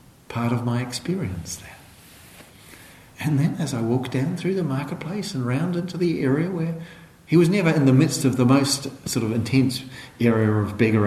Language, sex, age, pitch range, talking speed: English, male, 50-69, 120-170 Hz, 190 wpm